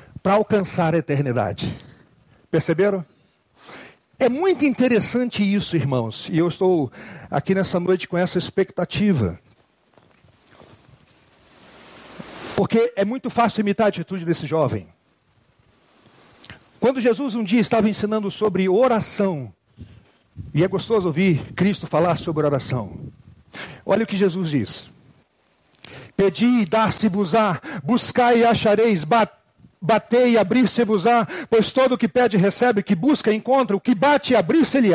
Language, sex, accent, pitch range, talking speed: Portuguese, male, Brazilian, 180-245 Hz, 125 wpm